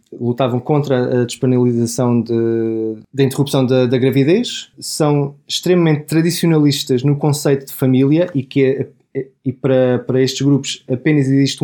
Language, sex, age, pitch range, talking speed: Portuguese, male, 20-39, 130-150 Hz, 125 wpm